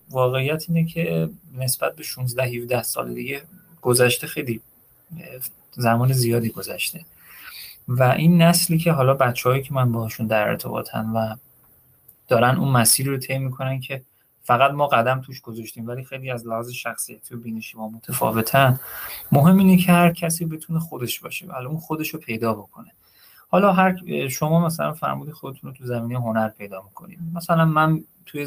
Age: 30-49